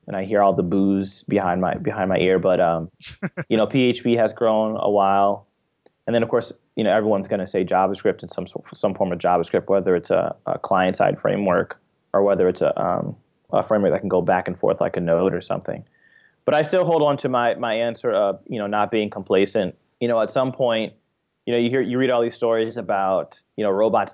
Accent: American